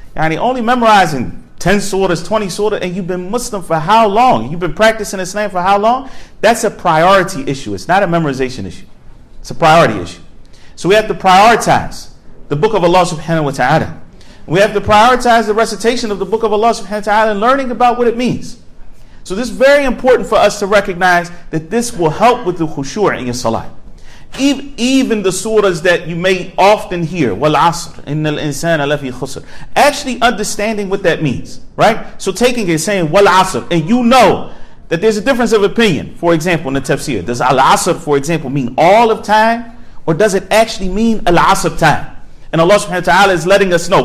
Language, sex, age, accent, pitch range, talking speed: English, male, 40-59, American, 160-220 Hz, 190 wpm